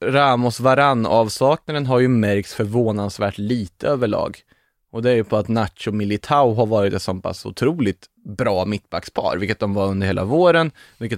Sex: male